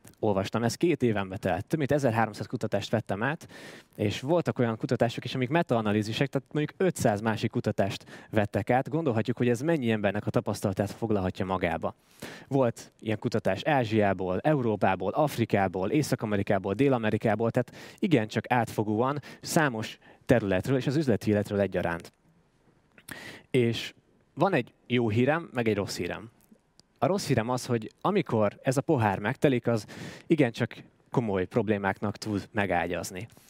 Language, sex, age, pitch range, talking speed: Hungarian, male, 20-39, 105-135 Hz, 140 wpm